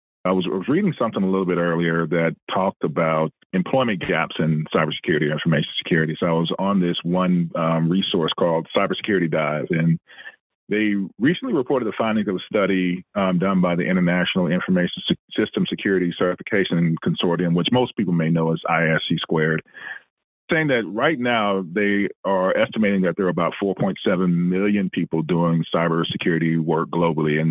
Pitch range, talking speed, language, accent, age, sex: 85-110 Hz, 165 wpm, English, American, 40-59, male